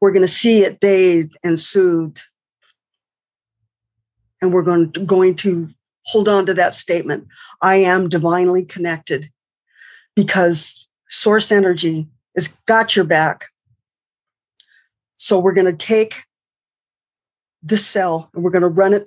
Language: English